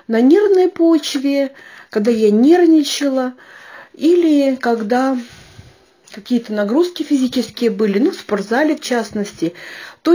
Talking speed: 105 wpm